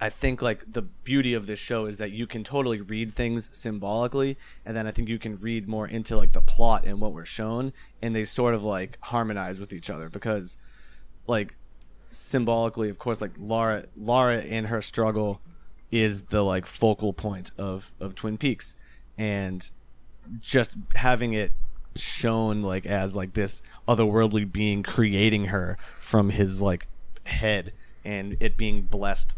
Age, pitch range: 30-49, 95-115 Hz